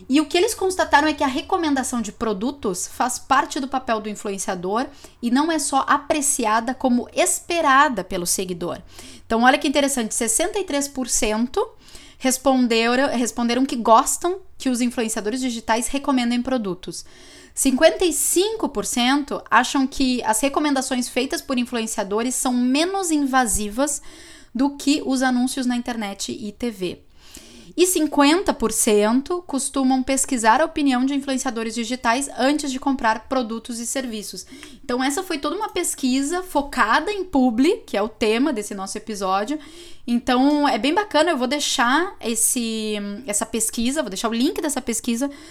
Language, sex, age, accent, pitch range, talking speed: Portuguese, female, 10-29, Brazilian, 230-290 Hz, 140 wpm